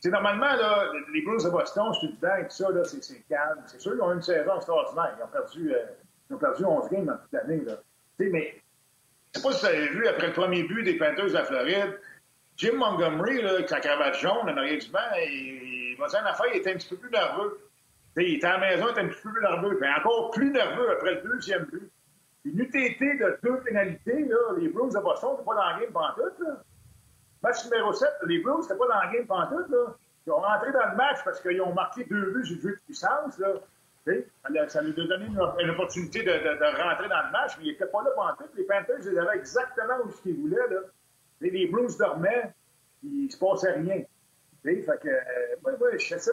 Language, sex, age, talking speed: French, male, 50-69, 245 wpm